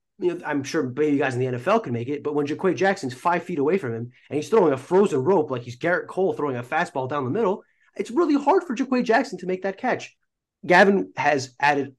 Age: 30-49